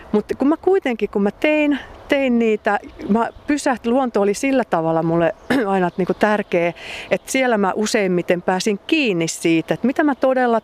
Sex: female